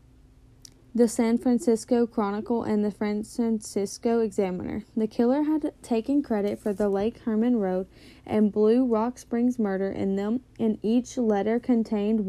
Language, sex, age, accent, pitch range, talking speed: English, female, 10-29, American, 215-245 Hz, 140 wpm